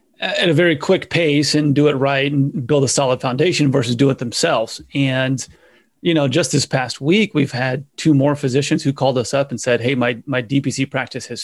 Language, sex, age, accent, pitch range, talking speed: English, male, 30-49, American, 130-155 Hz, 220 wpm